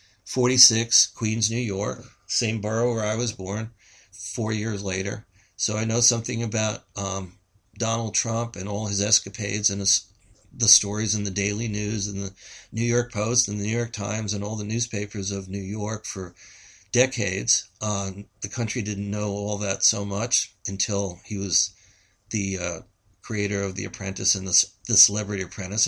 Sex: male